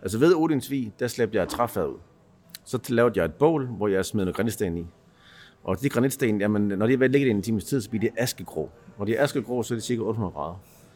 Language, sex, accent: Danish, male, native